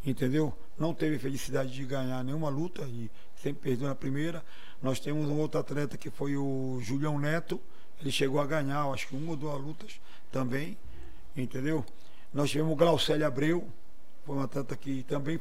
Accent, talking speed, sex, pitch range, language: Brazilian, 170 wpm, male, 140-180 Hz, Portuguese